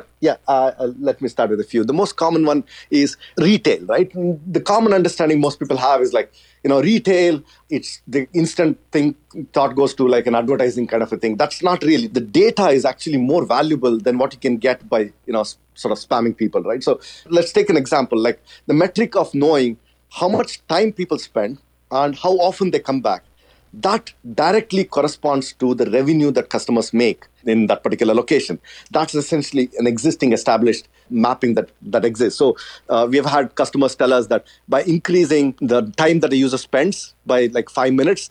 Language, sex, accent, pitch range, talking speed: English, male, Indian, 130-175 Hz, 195 wpm